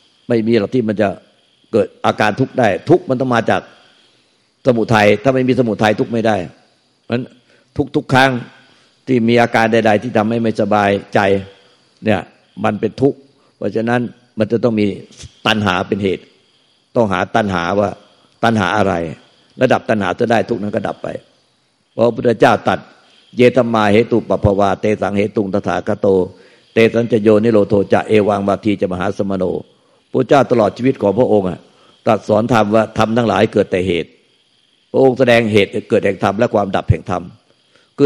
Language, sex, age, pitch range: Thai, male, 60-79, 105-125 Hz